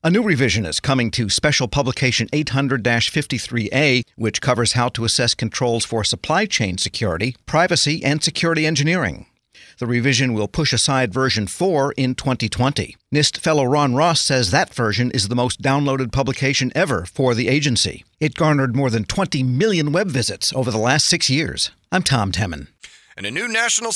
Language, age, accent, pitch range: English, 50-69, American, 125-180 Hz